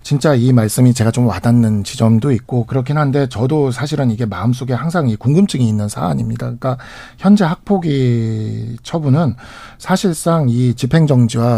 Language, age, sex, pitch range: Korean, 50-69, male, 120-165 Hz